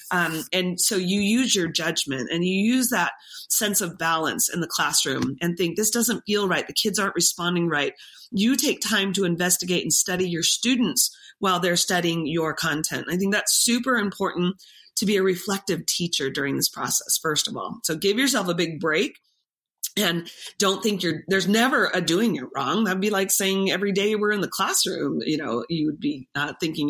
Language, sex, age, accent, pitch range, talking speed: English, female, 30-49, American, 170-215 Hz, 200 wpm